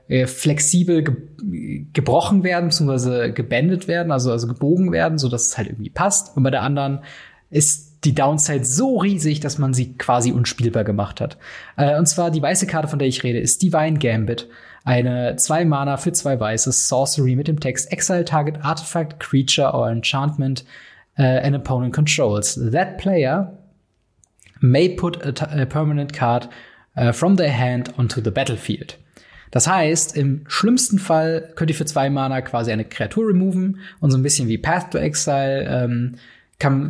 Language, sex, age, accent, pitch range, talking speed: German, male, 20-39, German, 125-165 Hz, 170 wpm